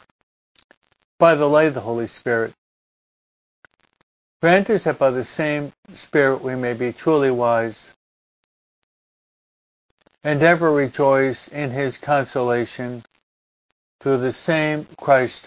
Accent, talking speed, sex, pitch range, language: American, 115 wpm, male, 115-155 Hz, English